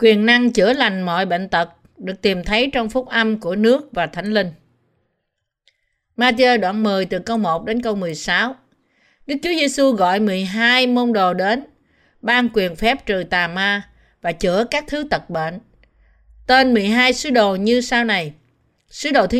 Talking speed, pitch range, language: 175 wpm, 190-240 Hz, Vietnamese